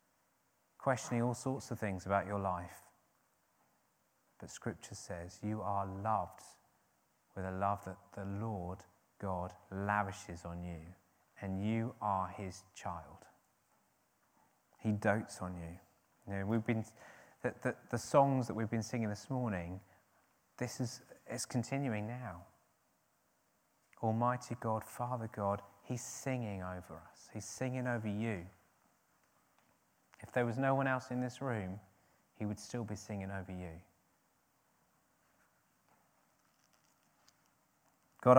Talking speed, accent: 125 wpm, British